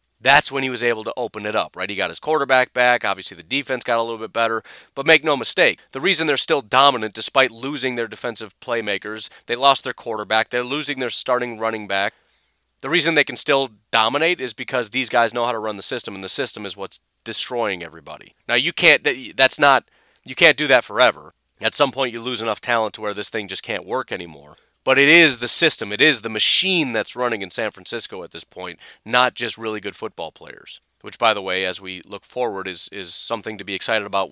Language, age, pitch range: English, 30-49, 110-130 Hz